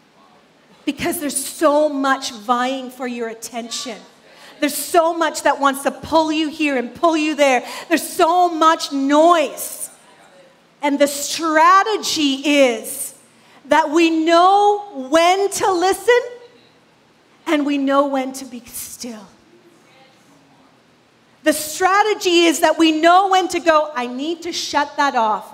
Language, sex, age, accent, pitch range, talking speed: English, female, 40-59, American, 290-385 Hz, 135 wpm